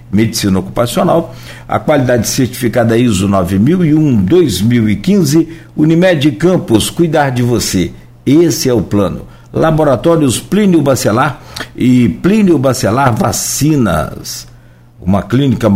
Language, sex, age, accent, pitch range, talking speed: Portuguese, male, 60-79, Brazilian, 105-145 Hz, 100 wpm